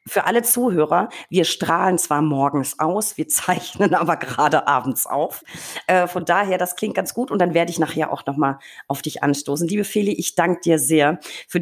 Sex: female